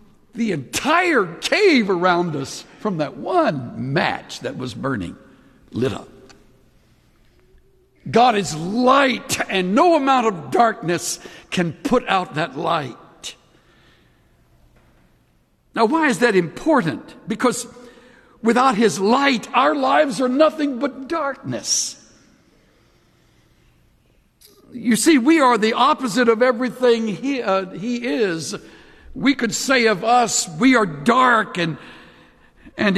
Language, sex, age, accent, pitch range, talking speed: English, male, 60-79, American, 175-245 Hz, 115 wpm